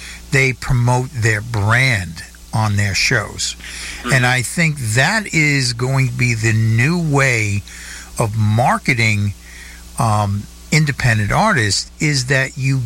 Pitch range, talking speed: 105-135 Hz, 120 wpm